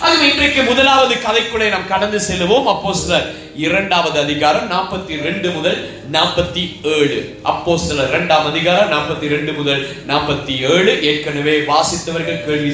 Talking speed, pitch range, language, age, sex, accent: 110 wpm, 155-230 Hz, Tamil, 30-49, male, native